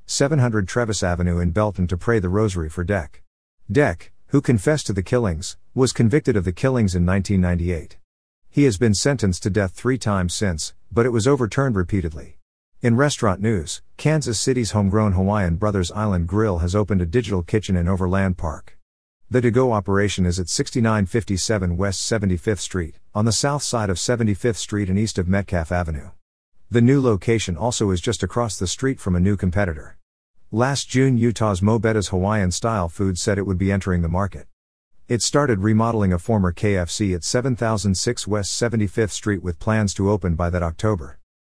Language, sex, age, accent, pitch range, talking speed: English, male, 50-69, American, 90-115 Hz, 175 wpm